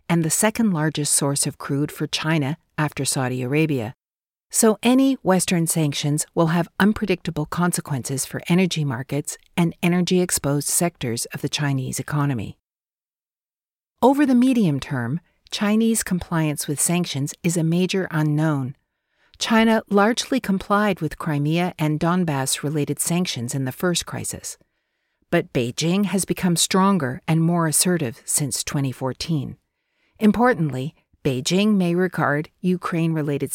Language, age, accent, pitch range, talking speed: English, 50-69, American, 150-185 Hz, 120 wpm